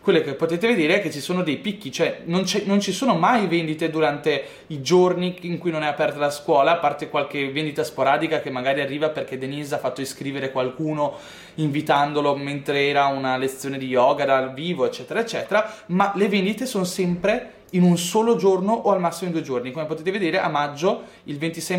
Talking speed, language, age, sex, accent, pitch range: 205 wpm, Italian, 20-39, male, native, 140-190 Hz